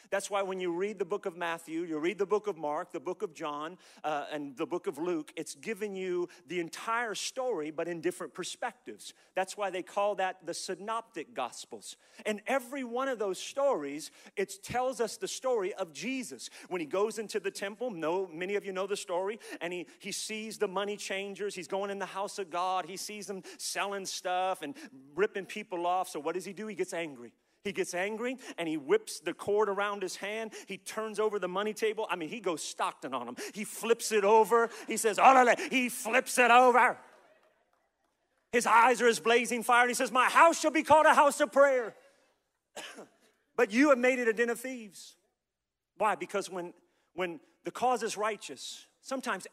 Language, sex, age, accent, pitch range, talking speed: English, male, 40-59, American, 180-240 Hz, 205 wpm